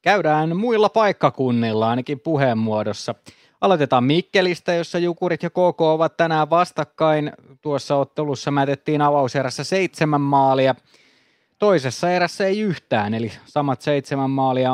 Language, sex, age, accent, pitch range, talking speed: Finnish, male, 30-49, native, 130-160 Hz, 115 wpm